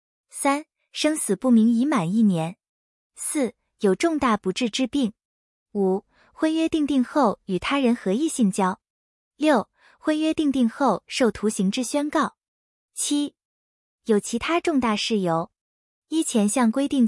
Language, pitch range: Chinese, 195-285 Hz